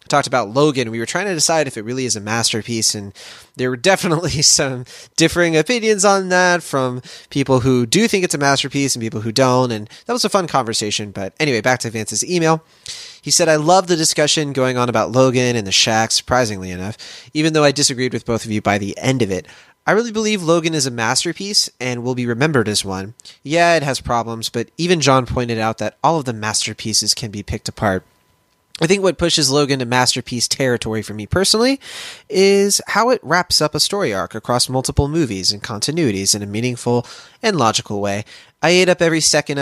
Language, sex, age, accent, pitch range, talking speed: English, male, 20-39, American, 115-160 Hz, 215 wpm